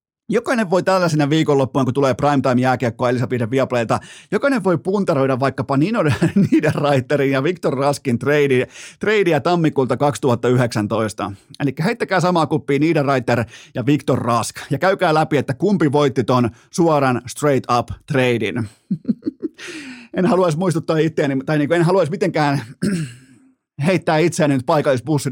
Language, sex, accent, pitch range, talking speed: Finnish, male, native, 125-165 Hz, 125 wpm